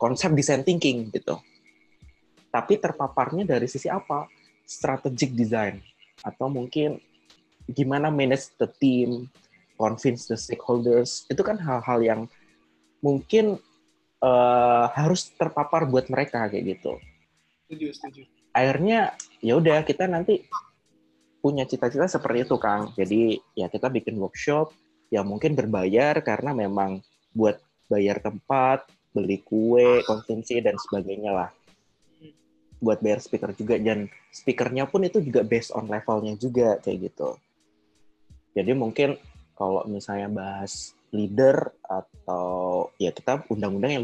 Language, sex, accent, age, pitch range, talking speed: Indonesian, male, native, 20-39, 100-135 Hz, 120 wpm